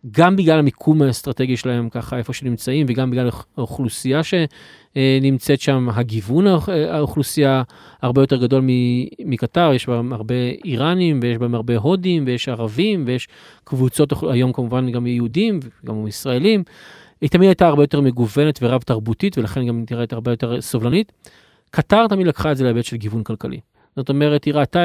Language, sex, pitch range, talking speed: Hebrew, male, 120-150 Hz, 150 wpm